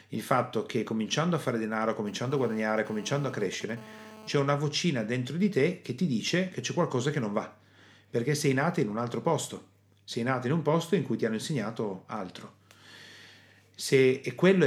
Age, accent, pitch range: 30-49, native, 100-135 Hz